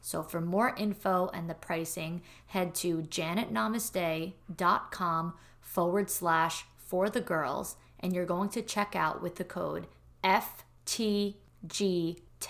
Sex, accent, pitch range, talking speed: female, American, 165-195 Hz, 120 wpm